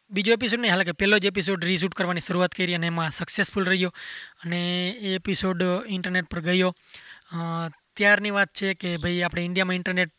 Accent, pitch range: native, 180-195 Hz